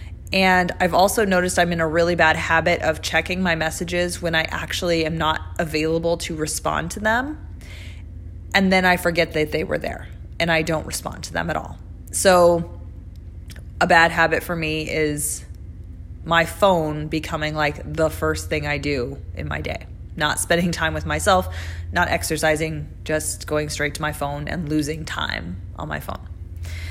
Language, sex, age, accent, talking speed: English, female, 20-39, American, 175 wpm